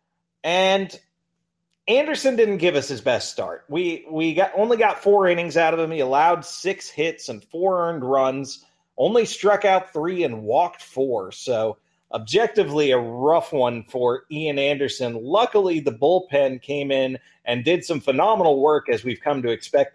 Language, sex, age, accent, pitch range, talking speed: English, male, 30-49, American, 140-185 Hz, 170 wpm